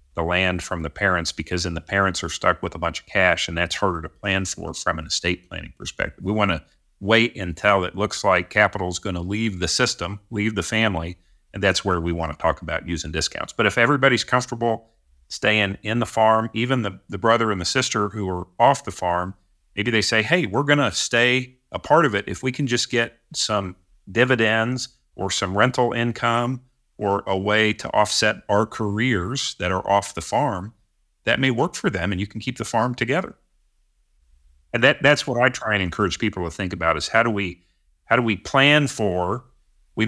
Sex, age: male, 40-59